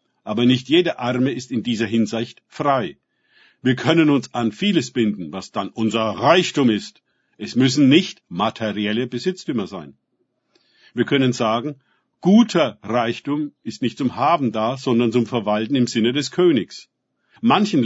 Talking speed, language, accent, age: 150 wpm, German, German, 50-69